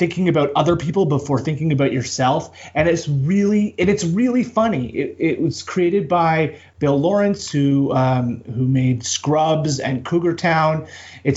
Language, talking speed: English, 165 wpm